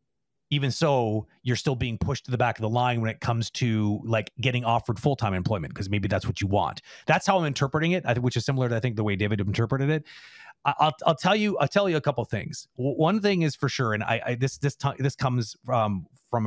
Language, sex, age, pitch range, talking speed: English, male, 30-49, 110-155 Hz, 250 wpm